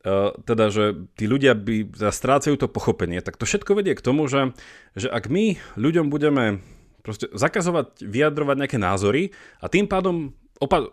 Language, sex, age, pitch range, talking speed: Slovak, male, 30-49, 110-140 Hz, 150 wpm